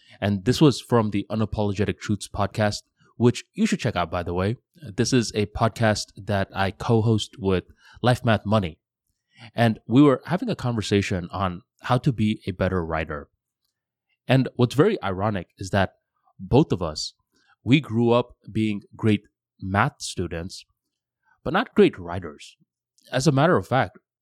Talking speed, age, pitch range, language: 160 wpm, 20-39, 100-125 Hz, English